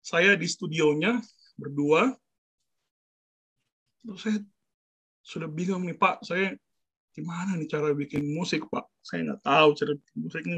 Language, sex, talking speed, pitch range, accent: Indonesian, male, 135 wpm, 150-205 Hz, native